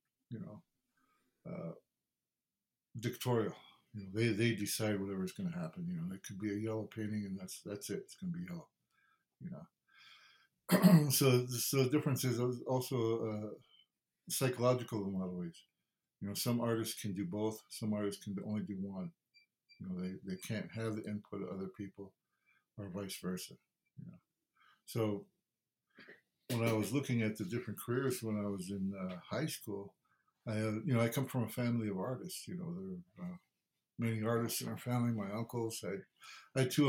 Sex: male